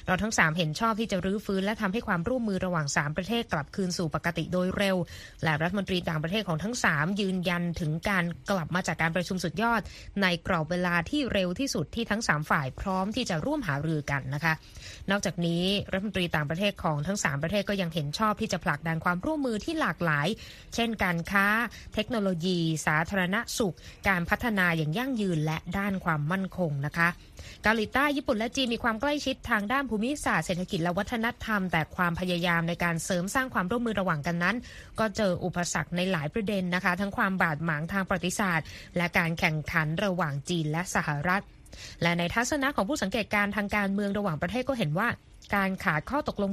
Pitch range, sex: 170-215 Hz, female